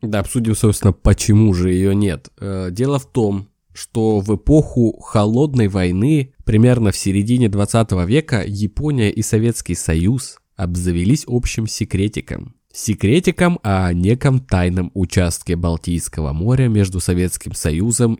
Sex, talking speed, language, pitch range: male, 130 wpm, Russian, 95-130 Hz